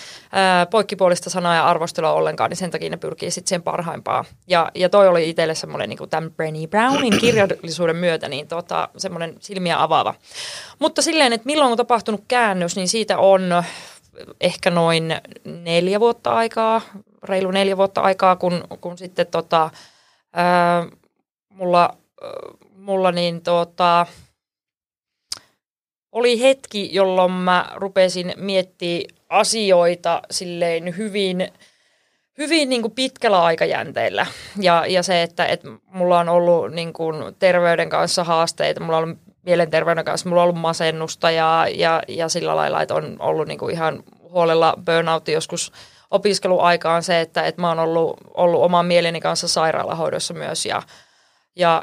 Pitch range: 170-195 Hz